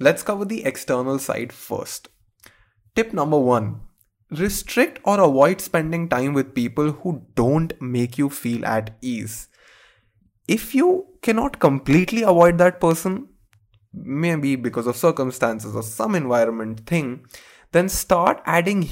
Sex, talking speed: male, 130 wpm